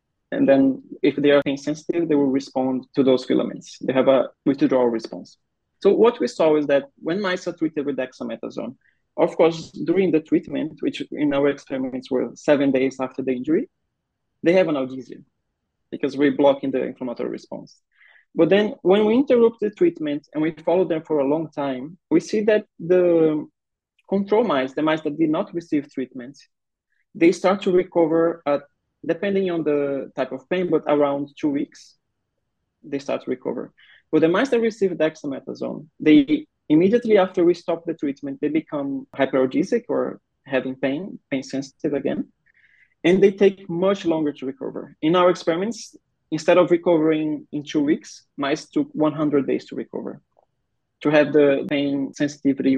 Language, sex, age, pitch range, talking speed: English, male, 20-39, 140-195 Hz, 170 wpm